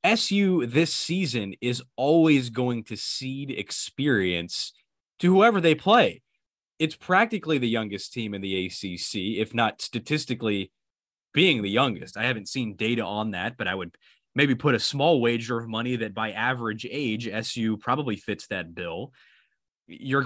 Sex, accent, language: male, American, English